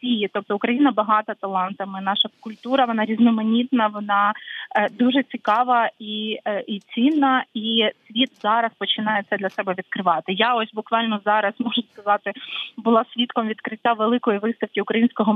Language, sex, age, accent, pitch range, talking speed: Ukrainian, female, 20-39, native, 210-245 Hz, 135 wpm